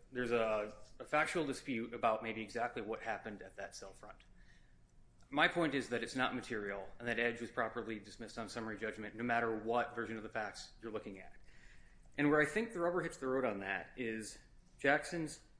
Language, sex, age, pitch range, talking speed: English, male, 30-49, 110-145 Hz, 205 wpm